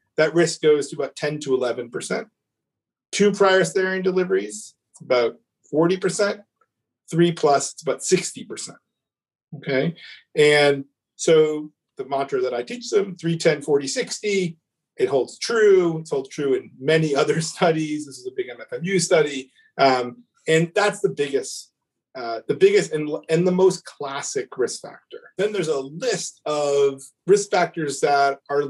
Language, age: English, 40-59